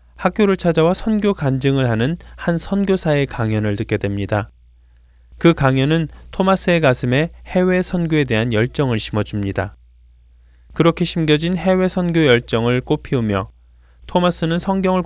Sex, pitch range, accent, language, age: male, 105-170 Hz, native, Korean, 20-39